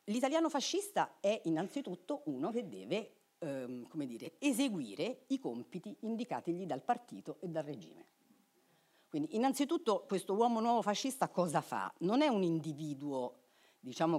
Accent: native